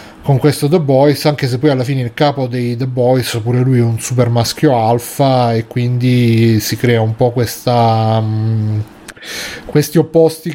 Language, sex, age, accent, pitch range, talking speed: Italian, male, 30-49, native, 115-135 Hz, 170 wpm